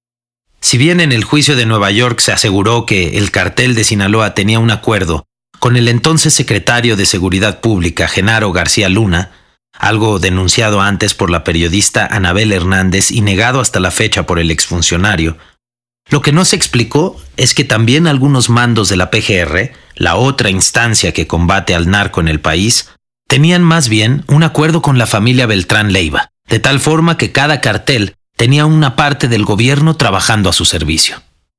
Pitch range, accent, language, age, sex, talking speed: 95-130 Hz, Mexican, Spanish, 40-59, male, 175 wpm